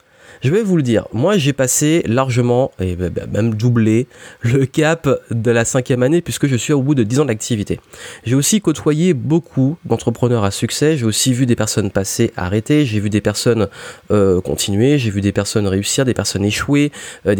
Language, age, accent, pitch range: French, 30-49, French, 110-135 Hz